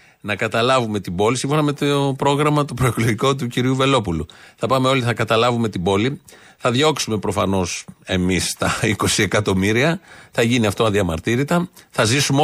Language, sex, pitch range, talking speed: Greek, male, 115-150 Hz, 160 wpm